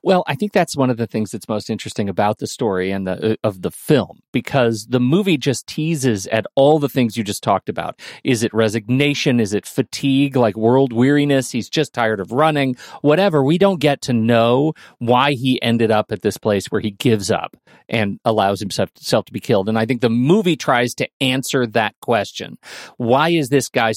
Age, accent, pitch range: 40-59, American, 115-145 Hz